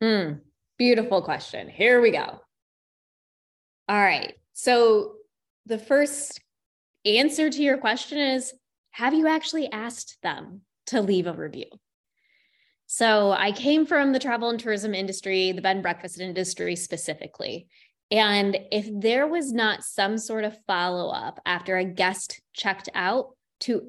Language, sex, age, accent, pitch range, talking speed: English, female, 20-39, American, 200-255 Hz, 140 wpm